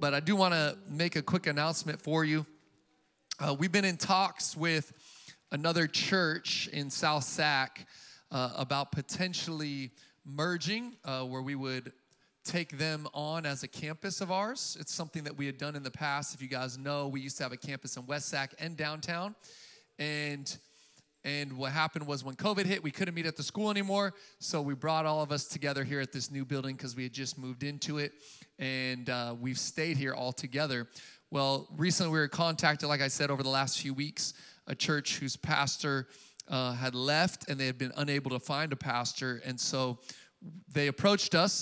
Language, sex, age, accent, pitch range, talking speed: English, male, 30-49, American, 135-165 Hz, 200 wpm